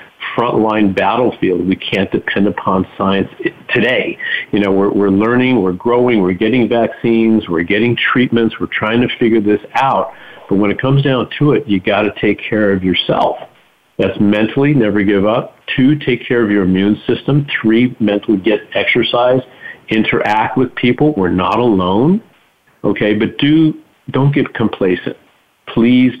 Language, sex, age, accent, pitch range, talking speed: English, male, 50-69, American, 100-120 Hz, 160 wpm